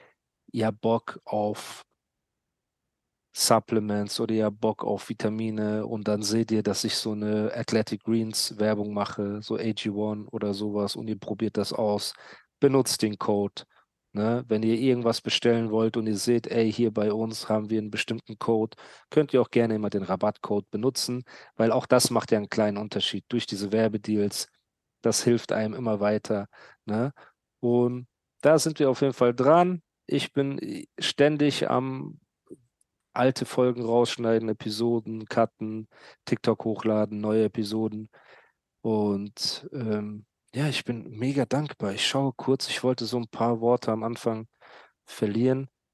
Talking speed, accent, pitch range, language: 150 wpm, German, 105-125 Hz, German